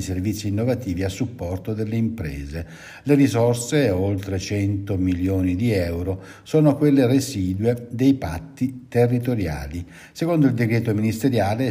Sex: male